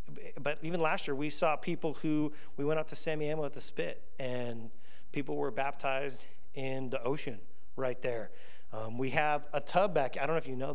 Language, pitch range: English, 130-160 Hz